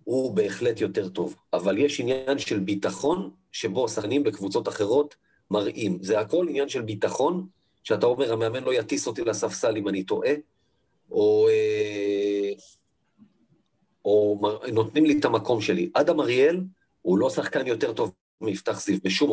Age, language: 40-59, Hebrew